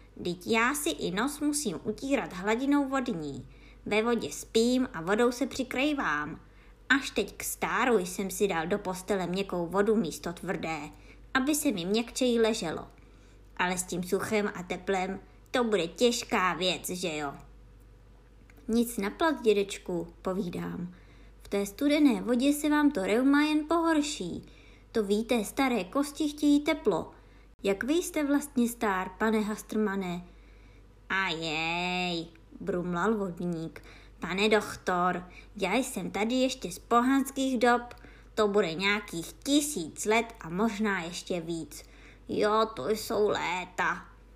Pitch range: 180-250 Hz